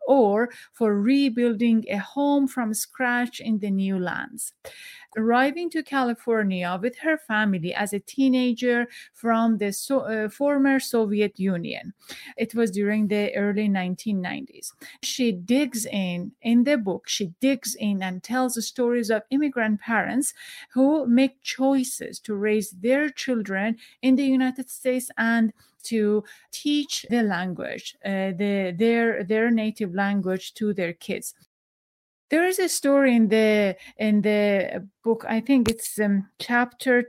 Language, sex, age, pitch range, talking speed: English, female, 30-49, 210-265 Hz, 140 wpm